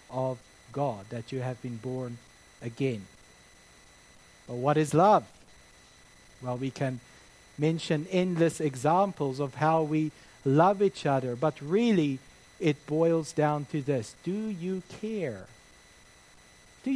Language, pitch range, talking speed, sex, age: English, 130-195 Hz, 125 wpm, male, 60-79